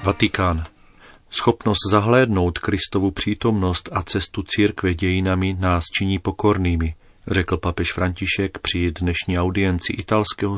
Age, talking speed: 40-59, 110 wpm